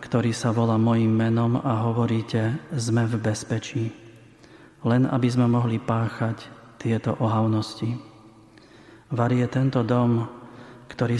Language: Slovak